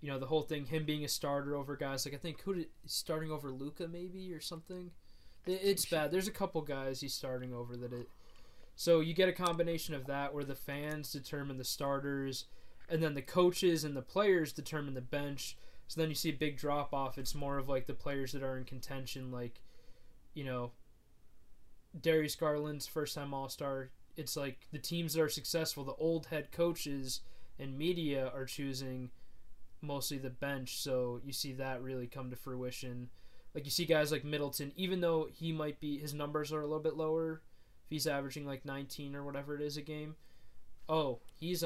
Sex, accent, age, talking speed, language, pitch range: male, American, 20-39, 195 wpm, English, 130-155 Hz